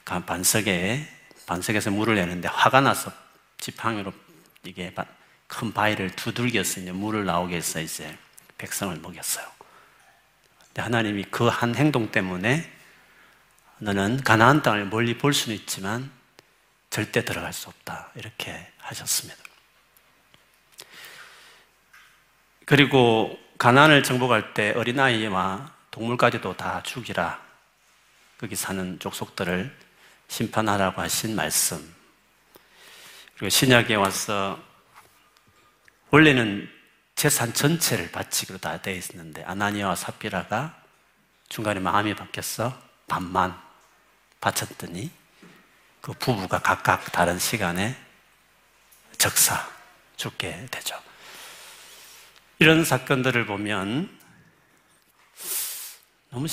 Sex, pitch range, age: male, 100-130 Hz, 40-59